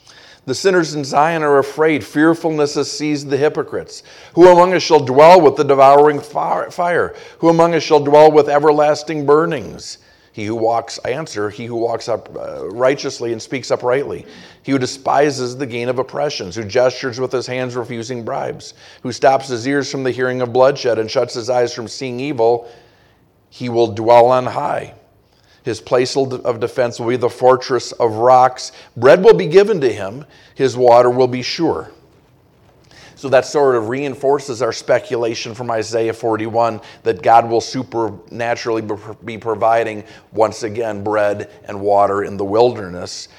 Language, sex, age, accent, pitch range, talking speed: English, male, 50-69, American, 115-145 Hz, 165 wpm